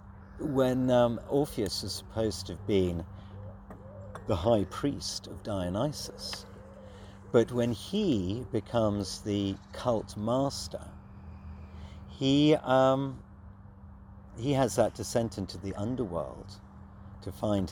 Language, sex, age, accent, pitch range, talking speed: English, male, 40-59, British, 95-115 Hz, 105 wpm